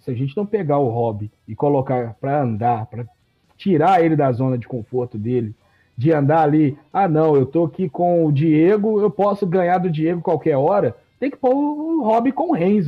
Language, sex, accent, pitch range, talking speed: Portuguese, male, Brazilian, 140-210 Hz, 205 wpm